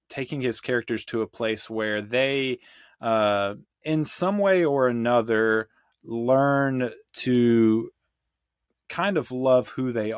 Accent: American